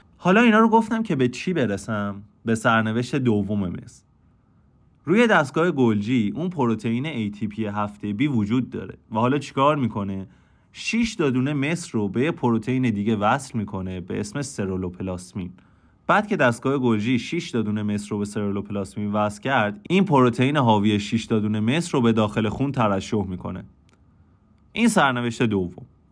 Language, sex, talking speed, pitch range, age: Persian, male, 150 wpm, 100-135 Hz, 30-49